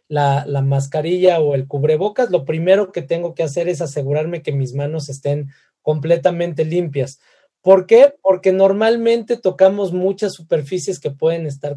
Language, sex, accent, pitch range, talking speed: Spanish, male, Mexican, 150-190 Hz, 155 wpm